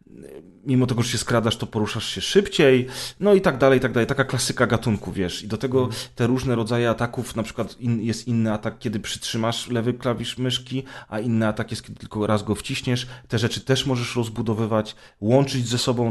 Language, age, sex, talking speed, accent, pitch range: Polish, 30-49, male, 200 wpm, native, 110-130 Hz